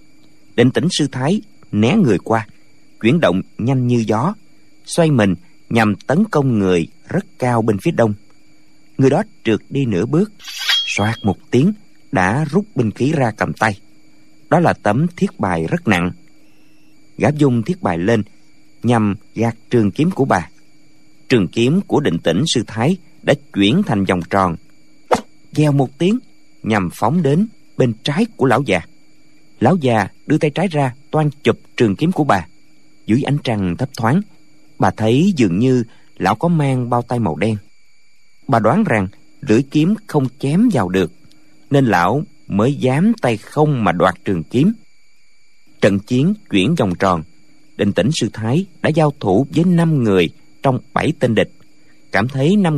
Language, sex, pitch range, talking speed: Vietnamese, male, 105-155 Hz, 170 wpm